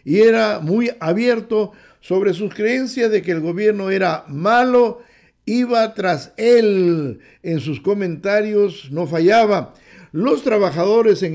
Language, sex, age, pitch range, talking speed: English, male, 50-69, 165-215 Hz, 125 wpm